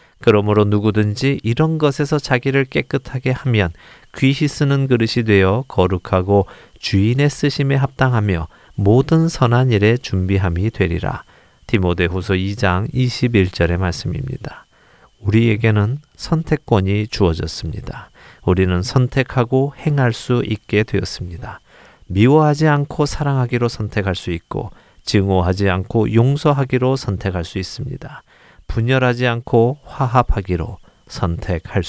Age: 40-59